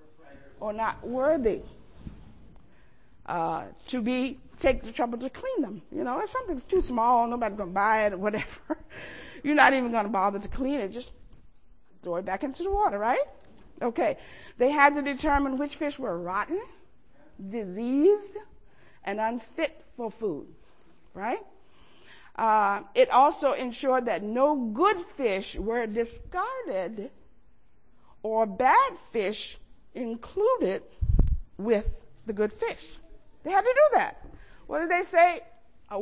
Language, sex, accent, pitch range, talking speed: English, female, American, 220-315 Hz, 145 wpm